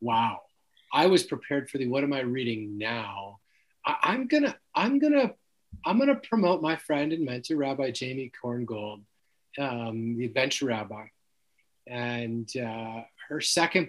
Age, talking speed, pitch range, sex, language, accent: 30-49, 145 wpm, 120-165 Hz, male, English, American